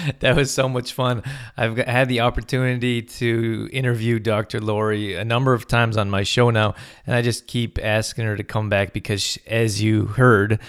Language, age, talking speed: English, 20-39, 190 wpm